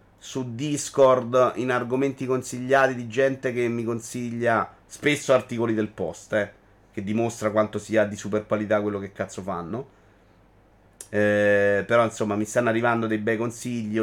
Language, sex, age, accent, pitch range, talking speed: Italian, male, 30-49, native, 110-145 Hz, 150 wpm